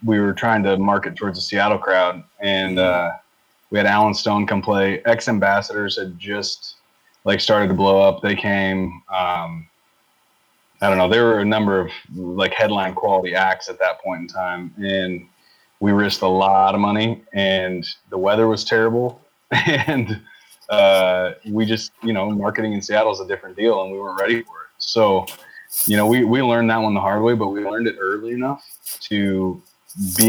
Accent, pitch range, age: American, 95-110 Hz, 20-39